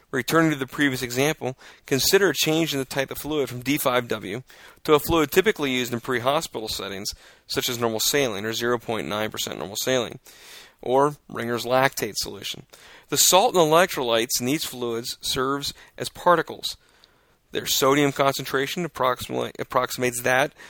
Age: 40-59